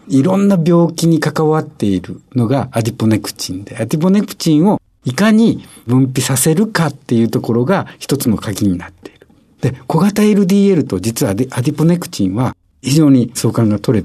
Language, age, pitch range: Japanese, 60-79, 110-160 Hz